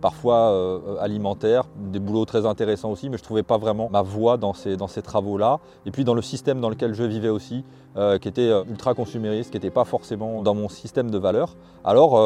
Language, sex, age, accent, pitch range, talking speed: French, male, 30-49, French, 105-125 Hz, 225 wpm